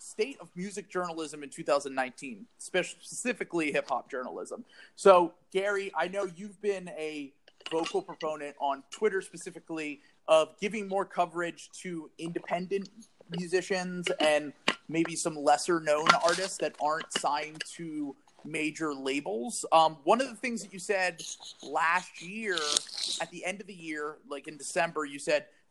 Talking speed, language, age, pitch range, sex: 140 wpm, English, 30-49, 150-200 Hz, male